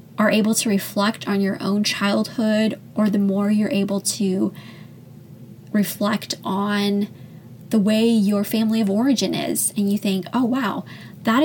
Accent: American